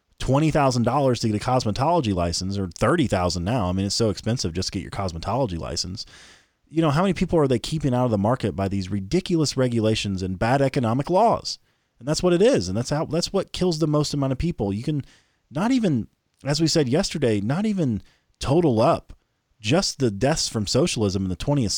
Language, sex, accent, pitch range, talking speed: English, male, American, 110-150 Hz, 210 wpm